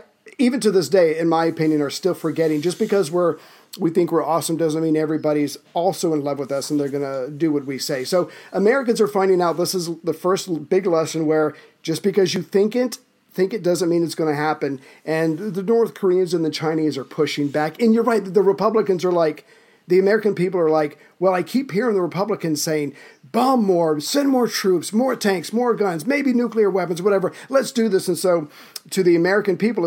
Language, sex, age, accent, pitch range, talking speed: English, male, 50-69, American, 155-200 Hz, 220 wpm